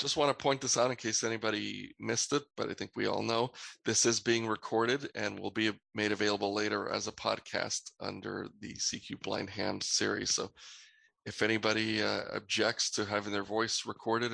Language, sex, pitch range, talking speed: English, male, 105-125 Hz, 195 wpm